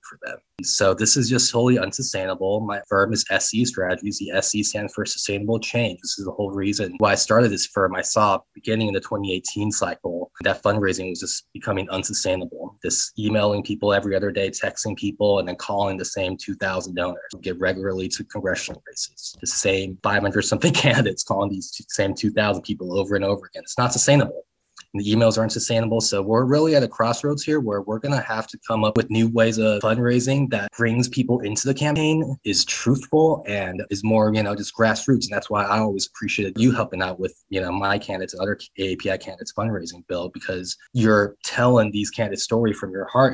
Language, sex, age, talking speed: English, male, 20-39, 205 wpm